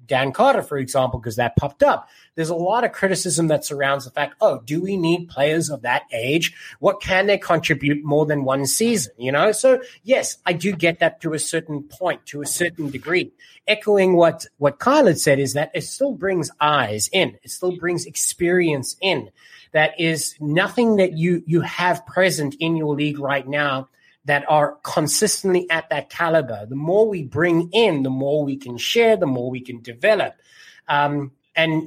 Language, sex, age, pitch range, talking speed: English, male, 30-49, 140-180 Hz, 195 wpm